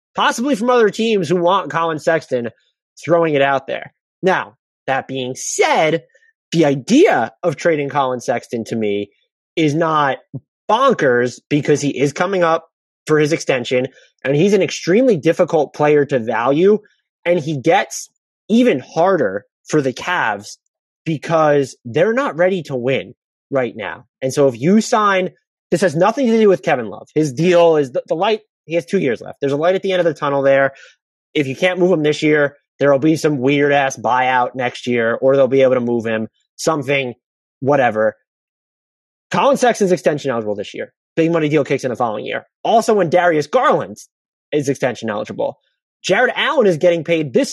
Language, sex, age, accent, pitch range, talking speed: English, male, 30-49, American, 135-180 Hz, 180 wpm